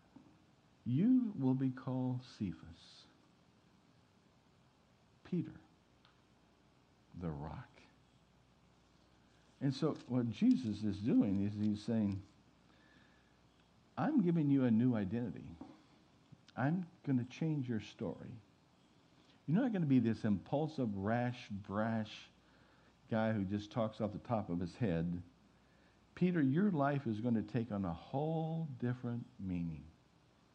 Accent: American